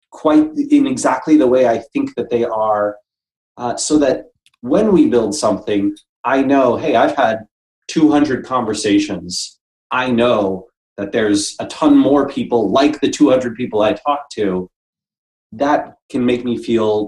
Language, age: English, 30-49